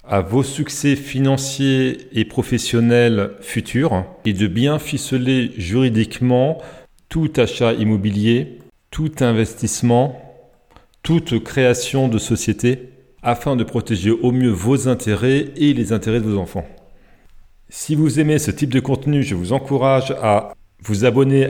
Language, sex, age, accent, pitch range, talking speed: French, male, 40-59, French, 110-135 Hz, 130 wpm